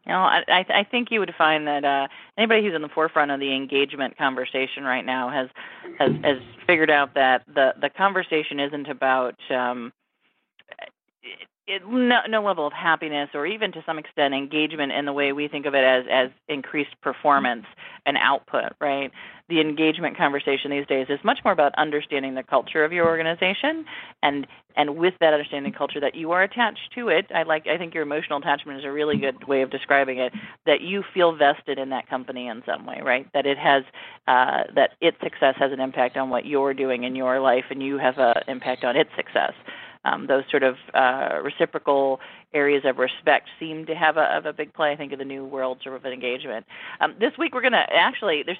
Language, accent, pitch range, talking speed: English, American, 135-160 Hz, 215 wpm